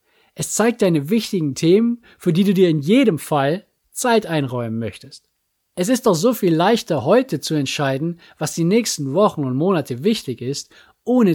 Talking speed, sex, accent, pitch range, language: 175 wpm, male, German, 140-200 Hz, German